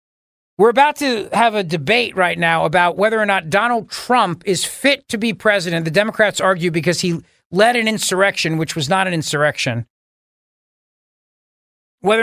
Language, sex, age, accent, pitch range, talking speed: English, male, 40-59, American, 175-225 Hz, 160 wpm